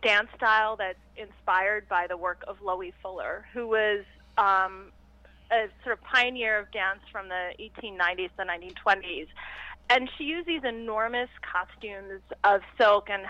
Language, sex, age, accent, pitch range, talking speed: English, female, 30-49, American, 205-265 Hz, 155 wpm